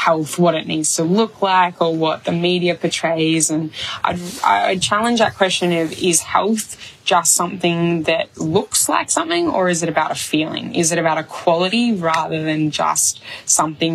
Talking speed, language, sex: 175 wpm, English, female